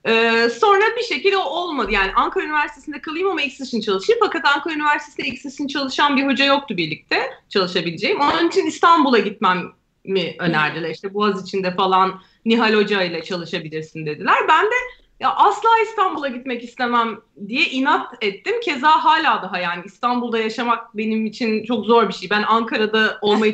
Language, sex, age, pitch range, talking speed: Turkish, female, 30-49, 200-295 Hz, 155 wpm